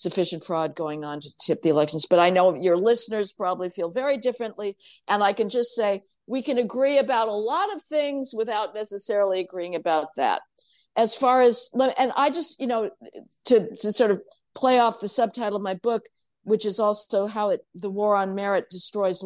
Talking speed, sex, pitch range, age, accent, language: 200 wpm, female, 200-245 Hz, 50-69, American, English